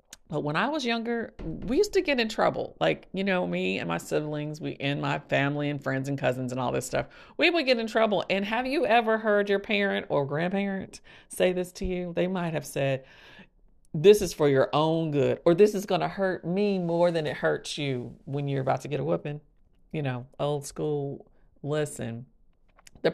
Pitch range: 140-195 Hz